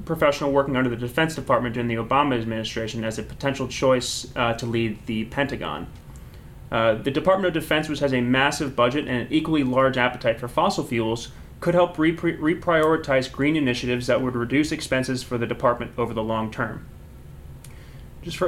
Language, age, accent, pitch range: English, 30-49, American, 120-155 Hz